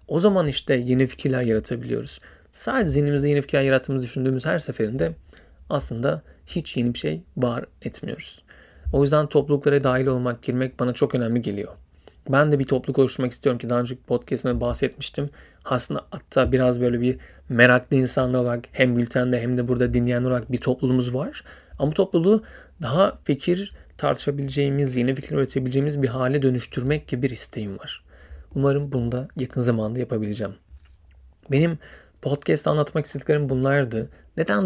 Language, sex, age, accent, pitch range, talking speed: Turkish, male, 40-59, native, 120-145 Hz, 150 wpm